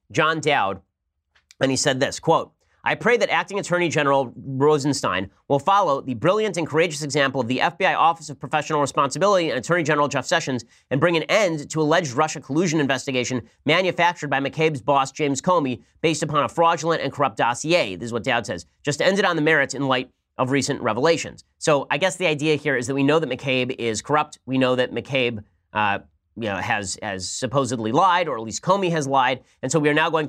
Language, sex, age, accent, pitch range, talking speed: English, male, 30-49, American, 125-155 Hz, 210 wpm